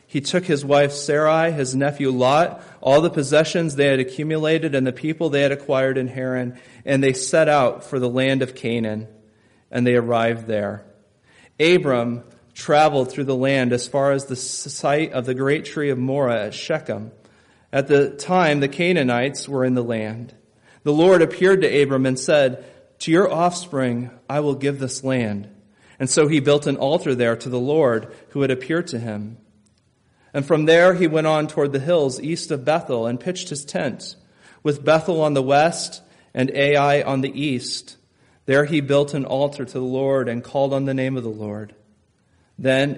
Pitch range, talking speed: 120-145 Hz, 190 wpm